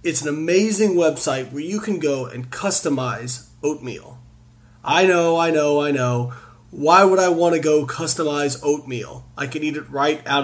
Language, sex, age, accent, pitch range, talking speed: English, male, 30-49, American, 120-185 Hz, 180 wpm